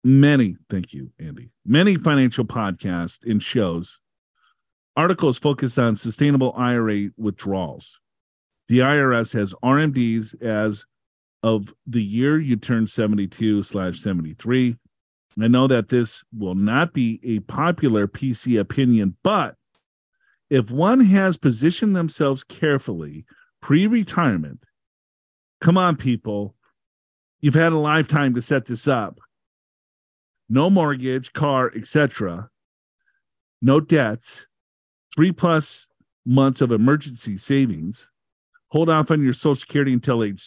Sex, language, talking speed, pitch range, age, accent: male, English, 115 wpm, 110-150 Hz, 40-59, American